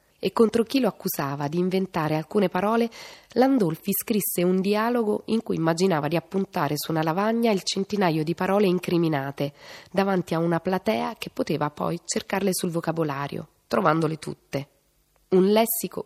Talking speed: 150 wpm